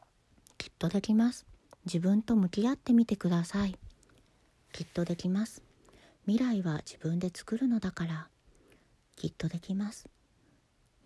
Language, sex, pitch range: Japanese, female, 170-220 Hz